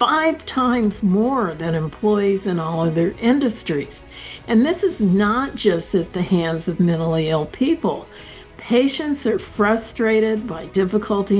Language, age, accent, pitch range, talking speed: English, 60-79, American, 170-215 Hz, 135 wpm